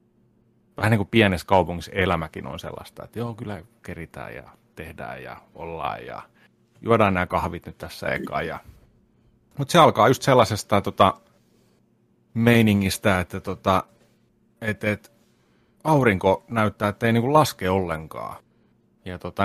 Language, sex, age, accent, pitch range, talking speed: Finnish, male, 30-49, native, 85-115 Hz, 135 wpm